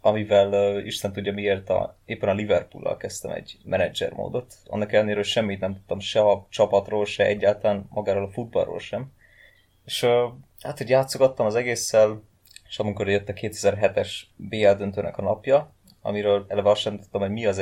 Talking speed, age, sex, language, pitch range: 170 wpm, 20-39, male, Hungarian, 100-115 Hz